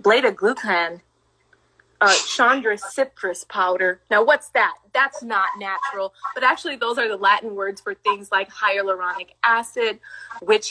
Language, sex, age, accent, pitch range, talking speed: English, female, 20-39, American, 195-260 Hz, 145 wpm